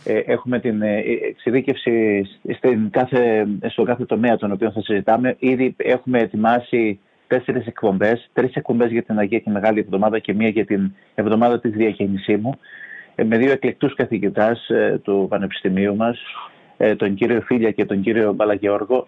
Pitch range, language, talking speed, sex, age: 110-135 Hz, Greek, 140 wpm, male, 30-49